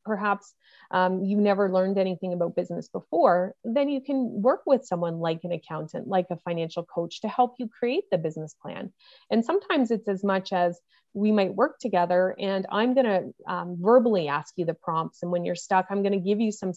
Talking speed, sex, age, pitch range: 210 wpm, female, 30-49, 175-205 Hz